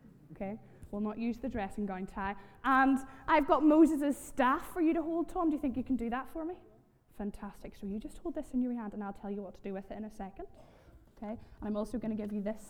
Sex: female